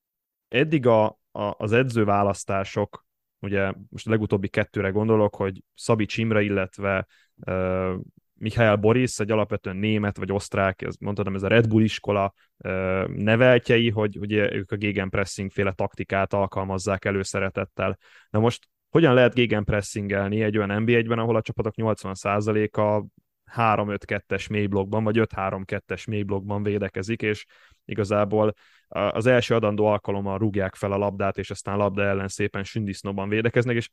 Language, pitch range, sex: Hungarian, 100-110 Hz, male